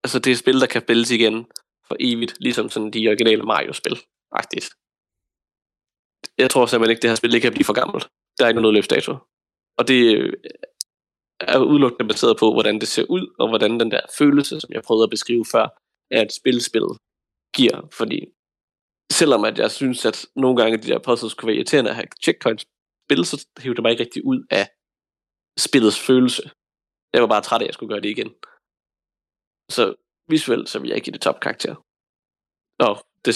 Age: 20-39